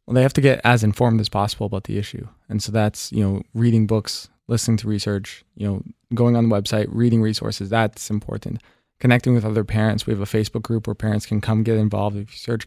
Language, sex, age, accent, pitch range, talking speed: English, male, 20-39, American, 110-125 Hz, 235 wpm